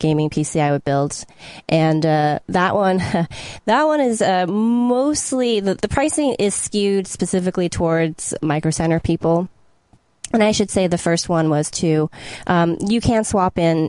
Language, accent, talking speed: English, American, 165 wpm